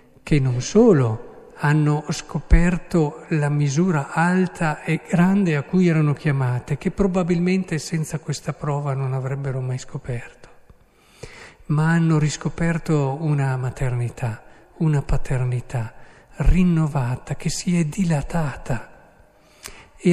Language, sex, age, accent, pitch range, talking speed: Italian, male, 50-69, native, 135-170 Hz, 105 wpm